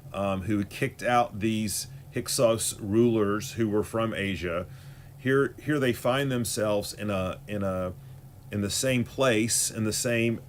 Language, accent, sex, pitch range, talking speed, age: English, American, male, 105-130 Hz, 155 wpm, 40-59